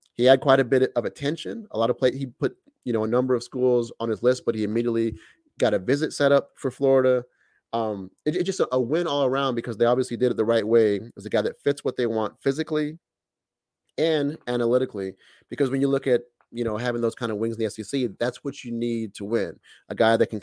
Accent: American